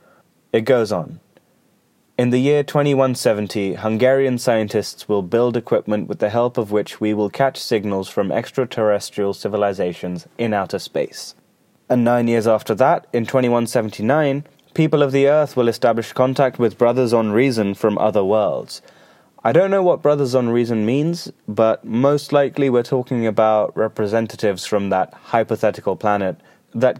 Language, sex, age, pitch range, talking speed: English, male, 20-39, 105-135 Hz, 150 wpm